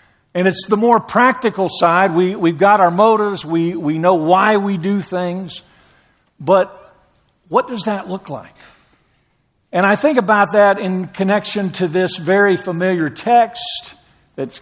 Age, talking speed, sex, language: 50-69, 150 wpm, male, English